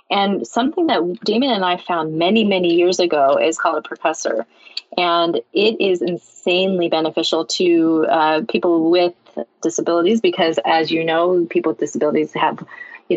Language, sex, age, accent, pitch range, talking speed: English, female, 30-49, American, 160-200 Hz, 155 wpm